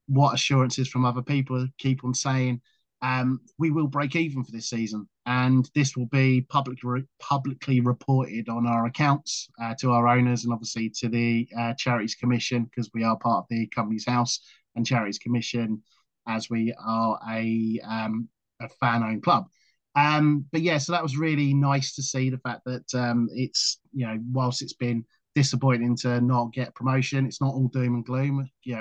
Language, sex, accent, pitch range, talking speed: English, male, British, 120-135 Hz, 185 wpm